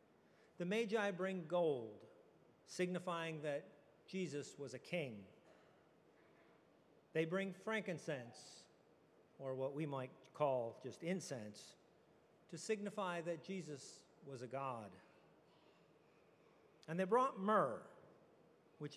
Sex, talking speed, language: male, 100 wpm, English